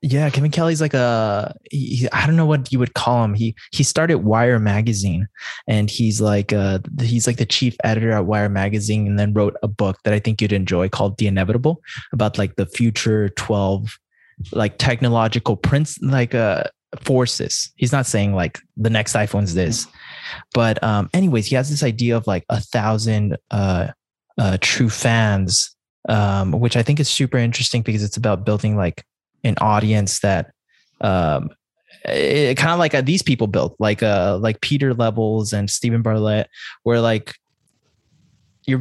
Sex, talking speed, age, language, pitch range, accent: male, 180 wpm, 20-39, English, 105-125 Hz, American